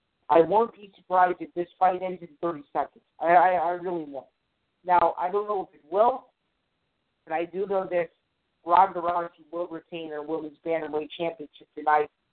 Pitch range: 160-205 Hz